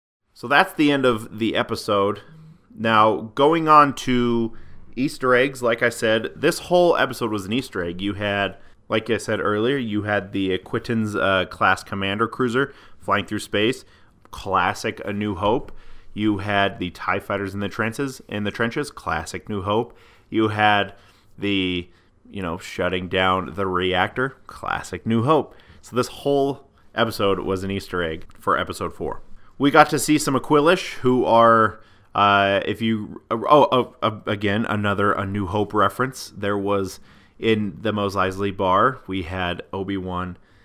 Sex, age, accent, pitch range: male, 30-49, American, 95-120 Hz